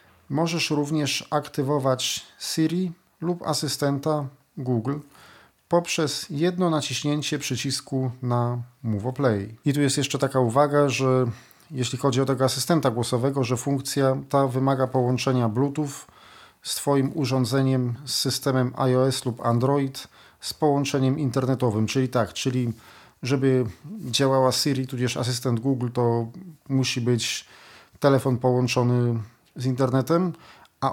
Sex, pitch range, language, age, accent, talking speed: male, 125-145 Hz, Polish, 40-59, native, 120 wpm